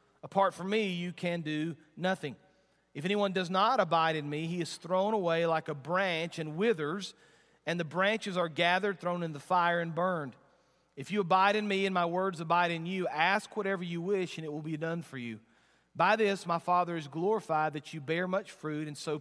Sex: male